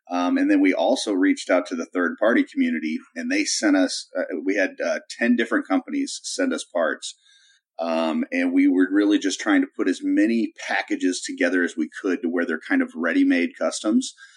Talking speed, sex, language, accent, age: 200 wpm, male, English, American, 30-49